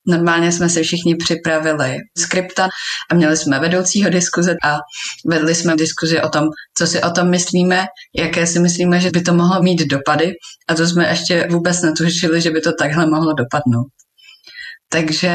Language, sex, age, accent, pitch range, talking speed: Czech, female, 20-39, native, 155-175 Hz, 170 wpm